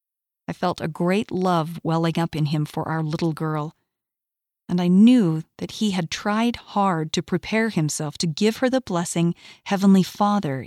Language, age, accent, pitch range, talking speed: English, 40-59, American, 160-195 Hz, 175 wpm